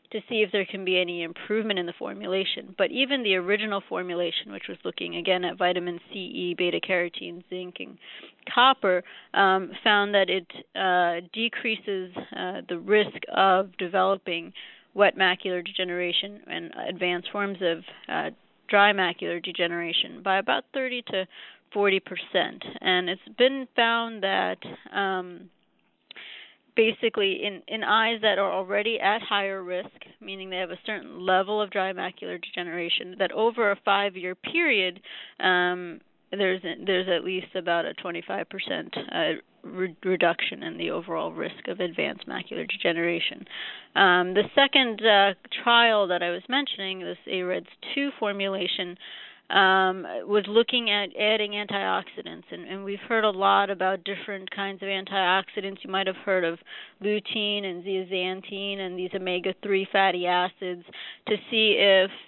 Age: 30-49